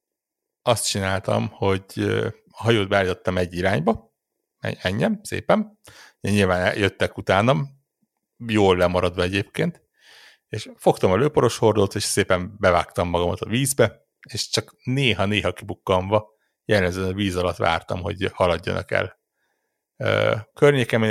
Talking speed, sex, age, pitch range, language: 115 wpm, male, 60-79, 95-115 Hz, Hungarian